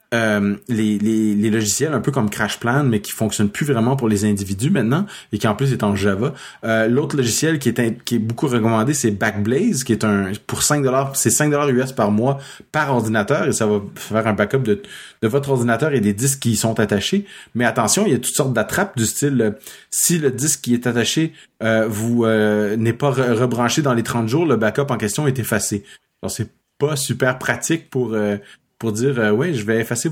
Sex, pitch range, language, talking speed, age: male, 105-135 Hz, French, 225 wpm, 30-49